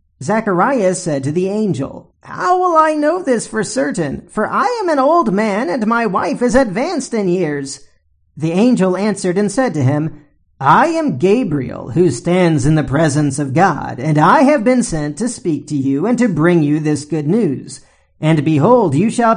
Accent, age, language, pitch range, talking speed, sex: American, 40-59, English, 155-220 Hz, 190 wpm, male